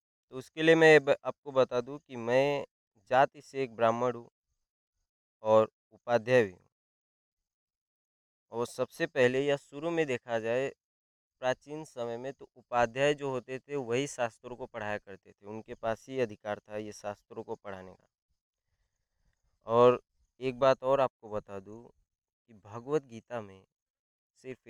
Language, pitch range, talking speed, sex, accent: Hindi, 105-135 Hz, 150 wpm, male, native